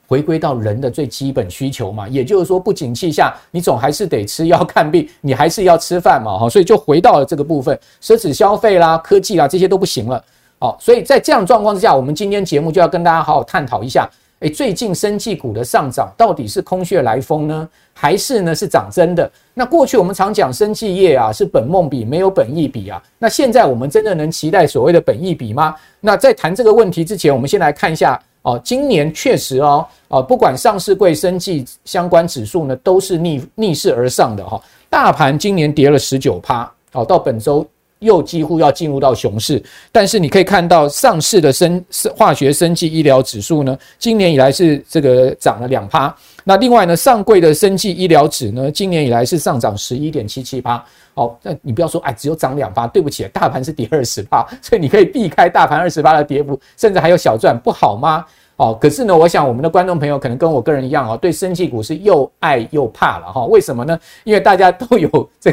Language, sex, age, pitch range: Chinese, male, 50-69, 140-195 Hz